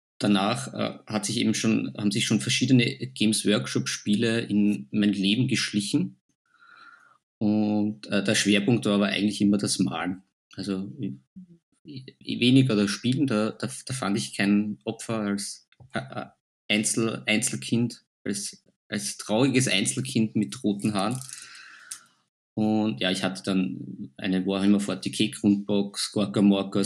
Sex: male